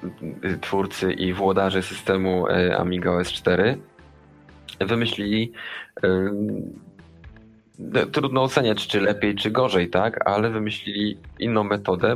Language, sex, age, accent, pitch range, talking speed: Polish, male, 20-39, native, 90-105 Hz, 95 wpm